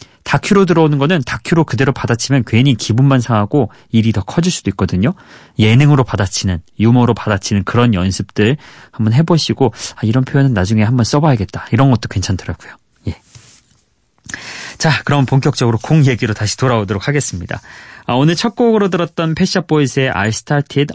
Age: 30-49